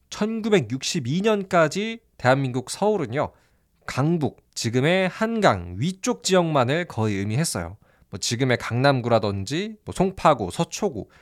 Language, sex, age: Korean, male, 20-39